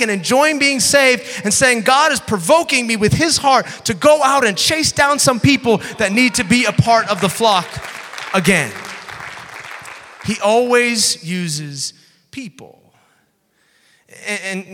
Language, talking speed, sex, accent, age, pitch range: English, 145 wpm, male, American, 30-49, 150-215 Hz